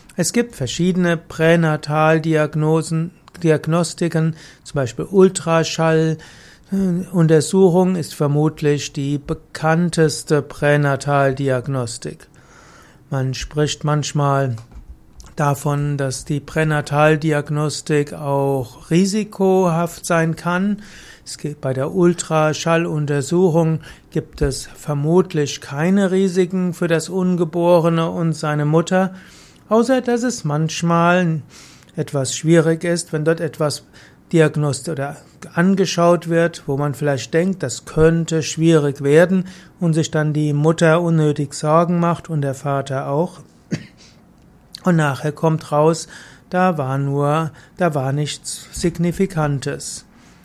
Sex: male